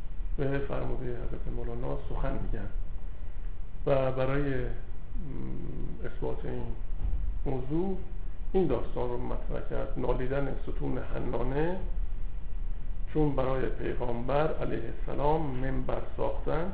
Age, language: 50-69, Persian